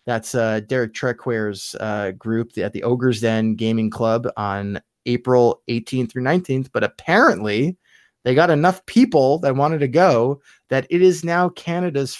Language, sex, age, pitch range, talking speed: English, male, 20-39, 110-145 Hz, 155 wpm